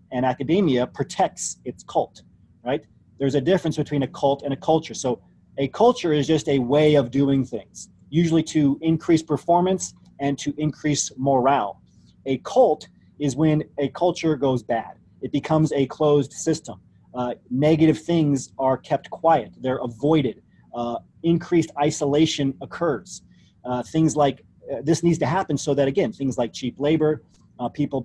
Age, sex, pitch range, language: 30-49, male, 125-155 Hz, English